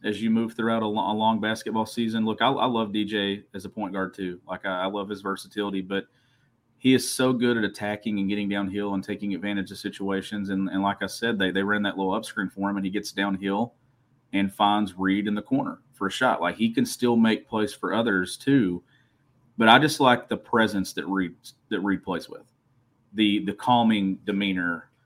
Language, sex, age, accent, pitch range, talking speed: English, male, 30-49, American, 95-115 Hz, 220 wpm